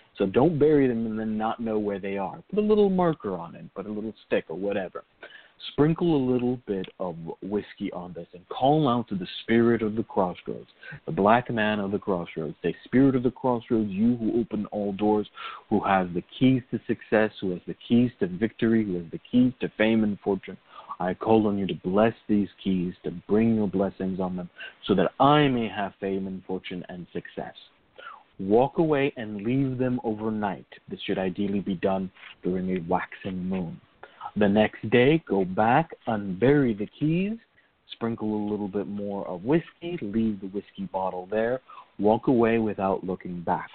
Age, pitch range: 40-59, 95-125 Hz